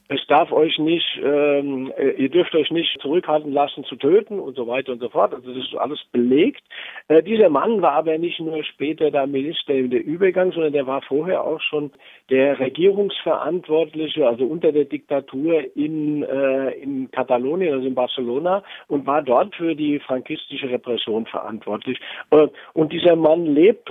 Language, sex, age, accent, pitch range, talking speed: German, male, 50-69, German, 135-175 Hz, 175 wpm